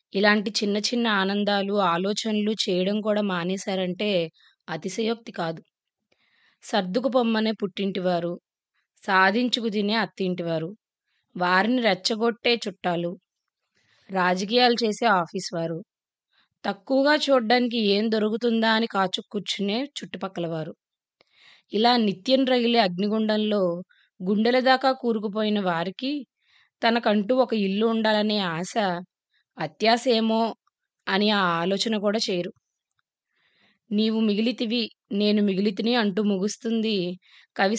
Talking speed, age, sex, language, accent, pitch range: 90 wpm, 20-39, female, Telugu, native, 195-230 Hz